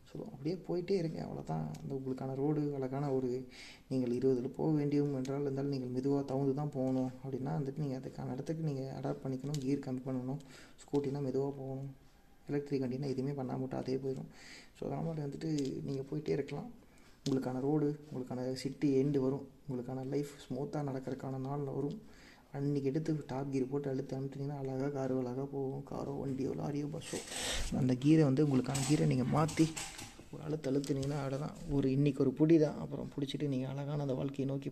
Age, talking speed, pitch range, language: 20-39, 165 wpm, 130-145 Hz, Tamil